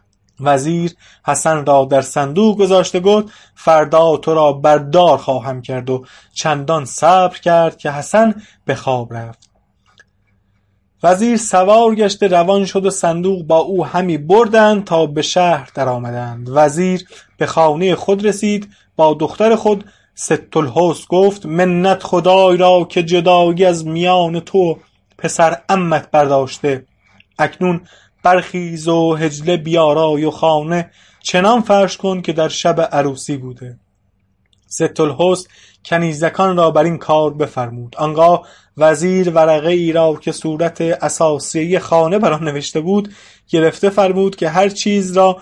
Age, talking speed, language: 30-49, 130 wpm, English